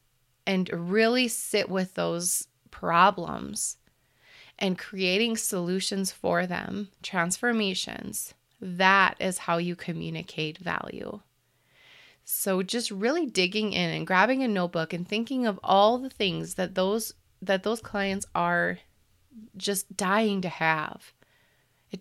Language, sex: English, female